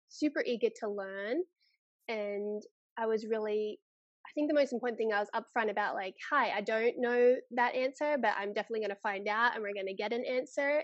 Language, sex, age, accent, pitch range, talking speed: English, female, 20-39, Australian, 215-255 Hz, 215 wpm